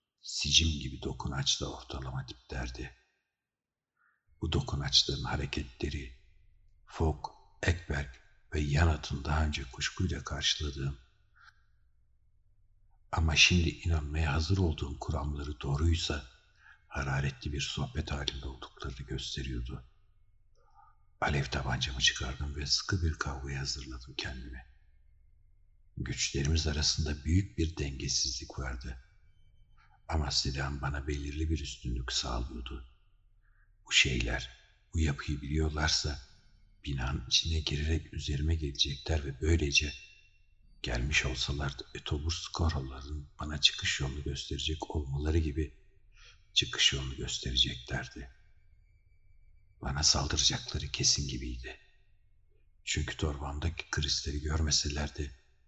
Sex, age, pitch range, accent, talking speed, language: male, 60-79, 70-85 Hz, native, 90 wpm, Turkish